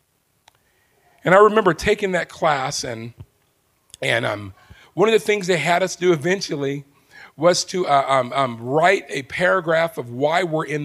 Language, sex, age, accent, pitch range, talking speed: English, male, 40-59, American, 140-185 Hz, 165 wpm